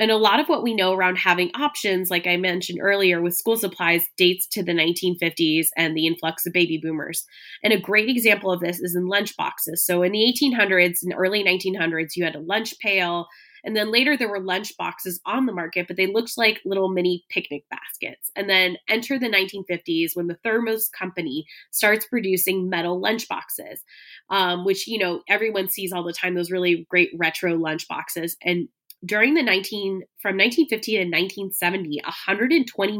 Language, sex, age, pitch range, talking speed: English, female, 20-39, 175-210 Hz, 190 wpm